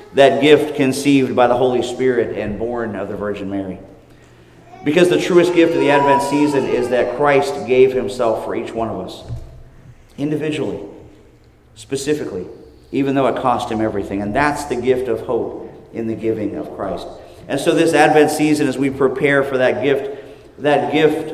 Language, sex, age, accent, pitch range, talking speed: English, male, 50-69, American, 115-140 Hz, 175 wpm